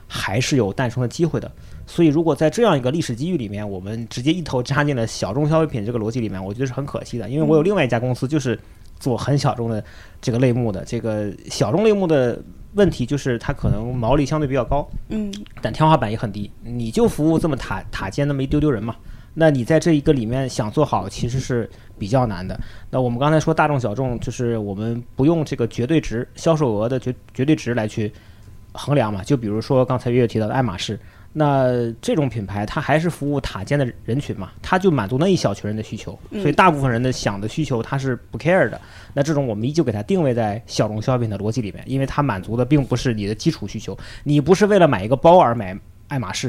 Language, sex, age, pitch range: Chinese, male, 30-49, 110-150 Hz